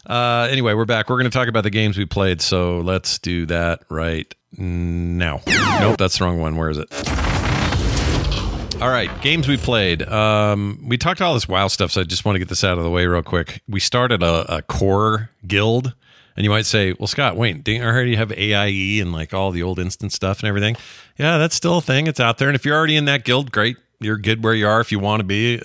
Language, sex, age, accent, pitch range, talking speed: English, male, 40-59, American, 90-110 Hz, 245 wpm